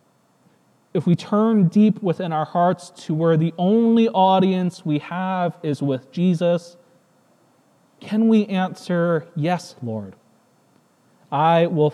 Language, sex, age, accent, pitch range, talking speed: English, male, 30-49, American, 150-195 Hz, 120 wpm